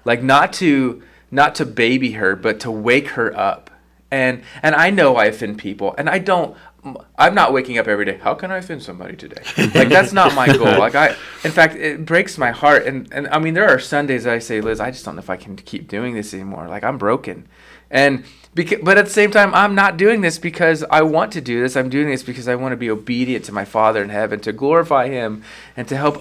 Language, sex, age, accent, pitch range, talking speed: English, male, 30-49, American, 115-155 Hz, 250 wpm